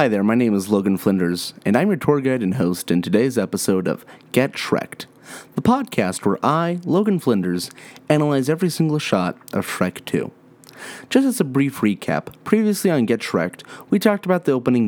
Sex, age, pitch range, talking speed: male, 30-49, 100-160 Hz, 190 wpm